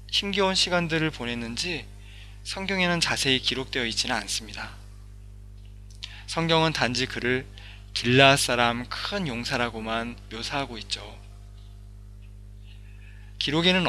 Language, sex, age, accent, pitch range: Korean, male, 20-39, native, 100-130 Hz